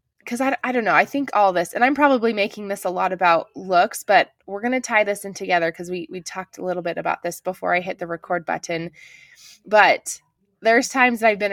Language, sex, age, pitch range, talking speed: English, female, 20-39, 180-215 Hz, 245 wpm